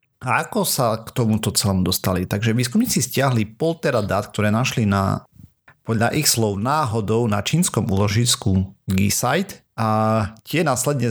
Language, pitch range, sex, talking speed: Slovak, 100-125 Hz, male, 140 wpm